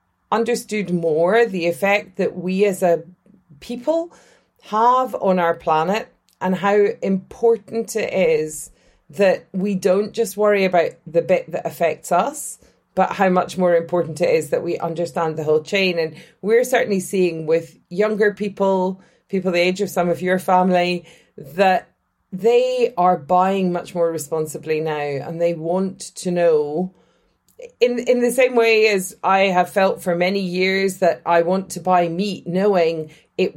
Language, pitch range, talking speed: English, 170-205 Hz, 160 wpm